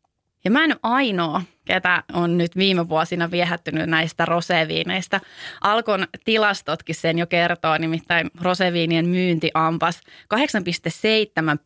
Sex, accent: female, native